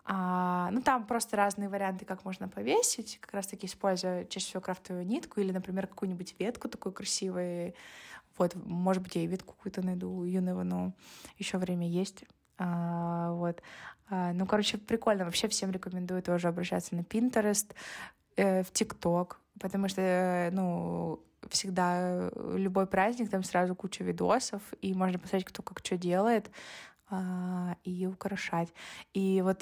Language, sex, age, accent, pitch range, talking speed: Russian, female, 20-39, native, 180-200 Hz, 145 wpm